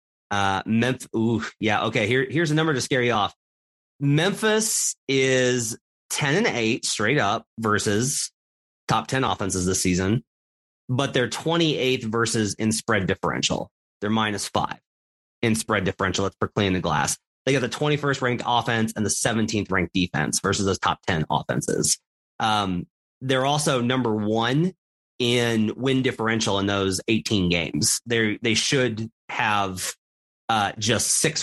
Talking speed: 155 wpm